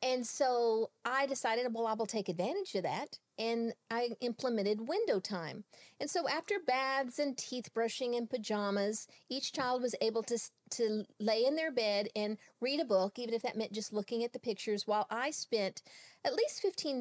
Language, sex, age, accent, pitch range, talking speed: English, female, 40-59, American, 215-265 Hz, 190 wpm